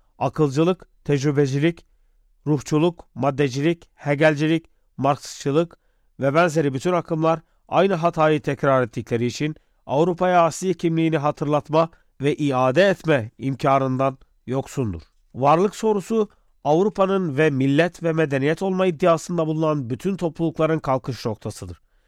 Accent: native